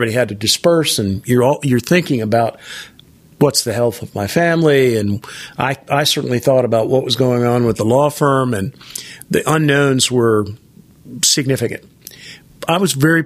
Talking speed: 170 wpm